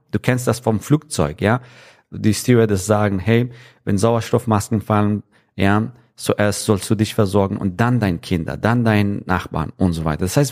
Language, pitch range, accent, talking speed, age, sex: German, 100-120 Hz, German, 175 wpm, 40-59, male